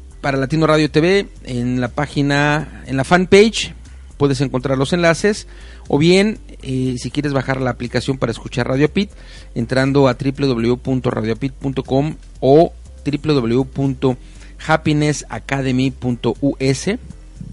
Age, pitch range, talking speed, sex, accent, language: 40-59, 120-145 Hz, 105 wpm, male, Mexican, Spanish